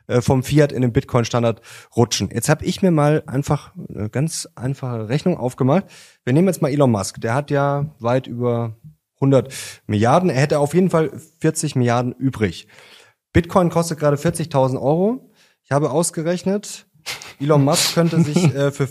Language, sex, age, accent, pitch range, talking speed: German, male, 30-49, German, 125-170 Hz, 160 wpm